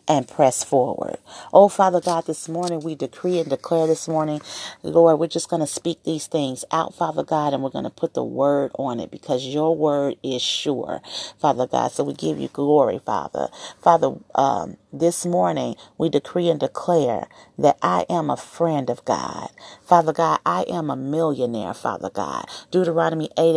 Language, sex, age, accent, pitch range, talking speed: English, female, 40-59, American, 145-170 Hz, 185 wpm